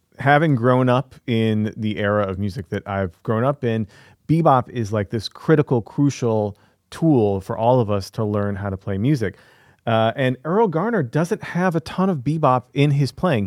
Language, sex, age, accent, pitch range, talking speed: English, male, 30-49, American, 105-135 Hz, 190 wpm